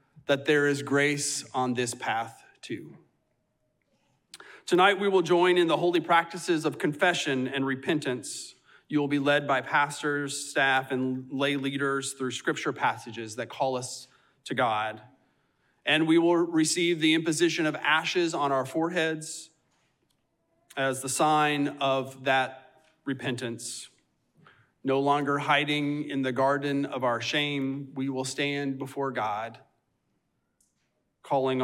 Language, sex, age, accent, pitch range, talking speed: English, male, 30-49, American, 130-155 Hz, 135 wpm